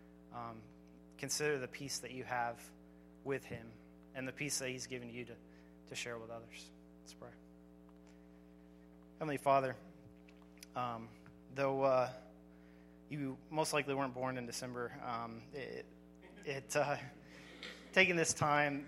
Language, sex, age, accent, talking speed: English, male, 20-39, American, 135 wpm